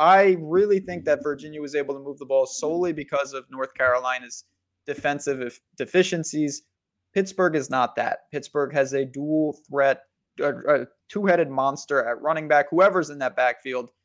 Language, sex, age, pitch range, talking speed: English, male, 20-39, 130-160 Hz, 160 wpm